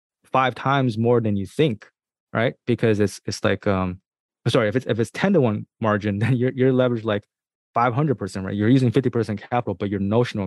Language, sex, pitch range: English, male, 95-120 Hz